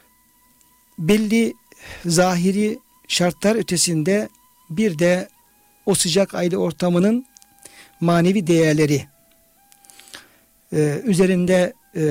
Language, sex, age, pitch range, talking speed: Turkish, male, 60-79, 165-210 Hz, 65 wpm